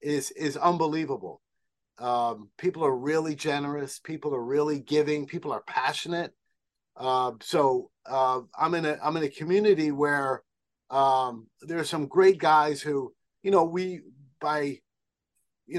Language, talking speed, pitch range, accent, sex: English, 145 wpm, 130-170 Hz, American, male